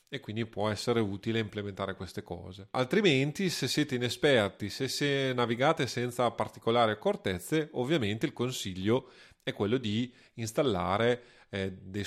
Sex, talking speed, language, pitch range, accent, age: male, 135 wpm, Italian, 110-130 Hz, native, 30-49